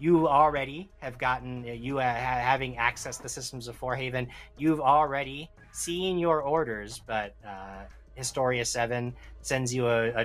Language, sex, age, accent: English, male, 30-49, American